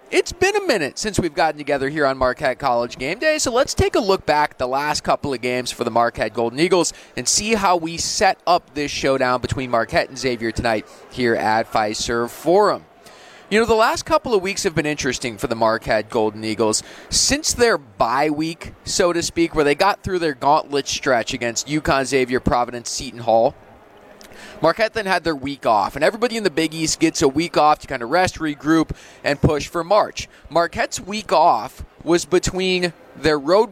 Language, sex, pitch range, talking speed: English, male, 130-180 Hz, 205 wpm